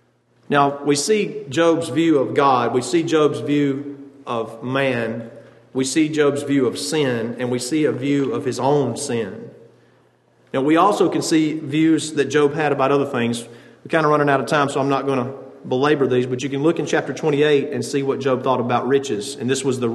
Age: 40-59